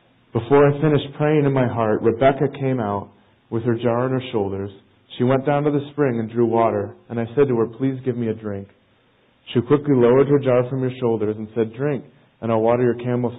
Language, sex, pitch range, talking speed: English, male, 110-130 Hz, 230 wpm